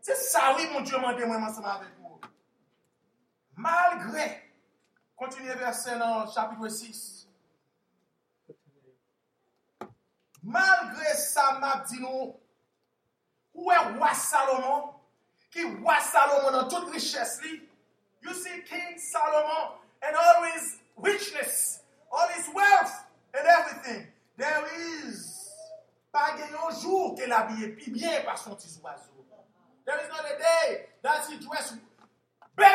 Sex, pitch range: male, 245-335 Hz